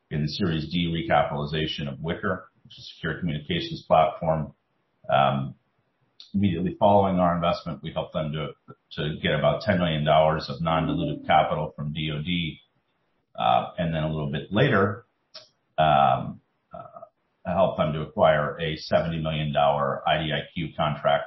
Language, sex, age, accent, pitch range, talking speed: English, male, 40-59, American, 75-90 Hz, 145 wpm